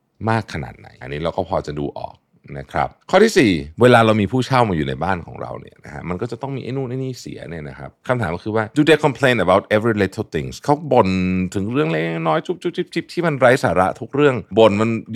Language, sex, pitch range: Thai, male, 80-115 Hz